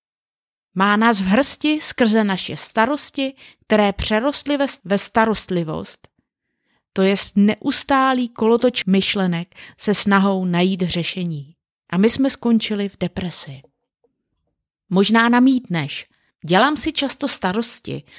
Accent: native